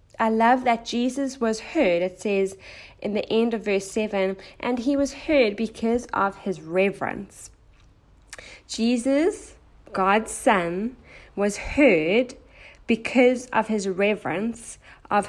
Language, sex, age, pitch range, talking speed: English, female, 20-39, 195-240 Hz, 125 wpm